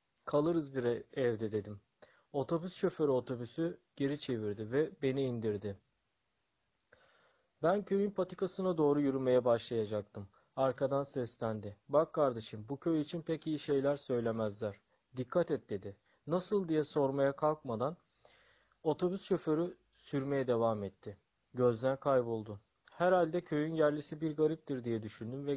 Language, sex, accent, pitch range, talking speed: Turkish, male, native, 115-160 Hz, 120 wpm